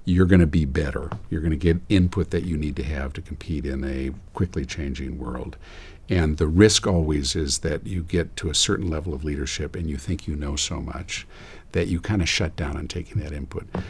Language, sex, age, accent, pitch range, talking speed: English, male, 50-69, American, 75-95 Hz, 215 wpm